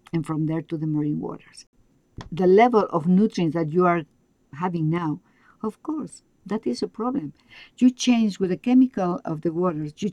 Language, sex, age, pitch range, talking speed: English, female, 50-69, 155-195 Hz, 185 wpm